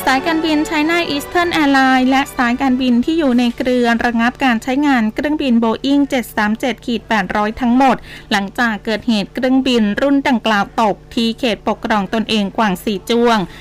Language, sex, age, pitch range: Thai, female, 20-39, 210-260 Hz